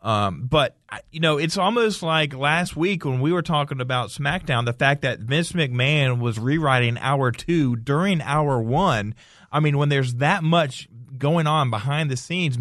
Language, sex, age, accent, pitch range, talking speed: English, male, 30-49, American, 135-175 Hz, 180 wpm